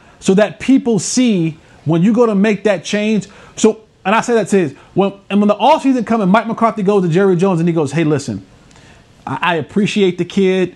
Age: 30-49